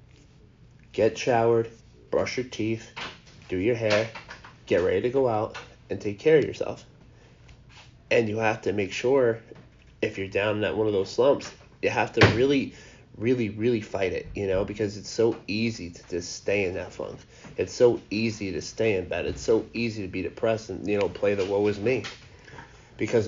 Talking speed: 195 wpm